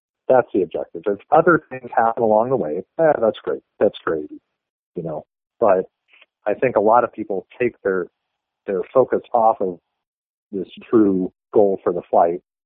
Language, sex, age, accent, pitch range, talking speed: English, male, 40-59, American, 100-135 Hz, 175 wpm